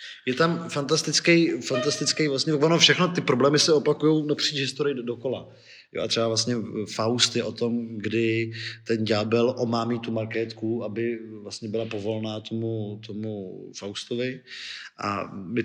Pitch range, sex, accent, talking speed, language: 110-125 Hz, male, native, 145 wpm, Czech